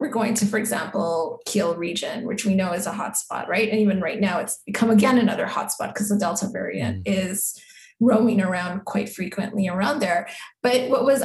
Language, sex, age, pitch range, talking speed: English, female, 20-39, 200-240 Hz, 200 wpm